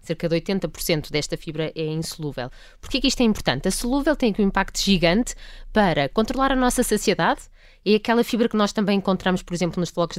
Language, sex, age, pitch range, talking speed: Portuguese, female, 20-39, 170-225 Hz, 200 wpm